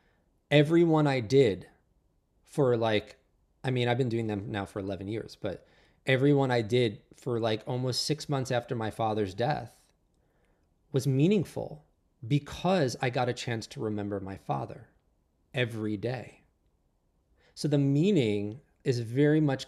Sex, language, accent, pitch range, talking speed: male, English, American, 105-140 Hz, 145 wpm